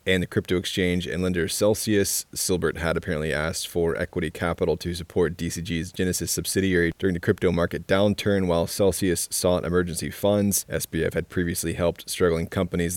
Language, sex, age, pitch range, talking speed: English, male, 20-39, 85-95 Hz, 160 wpm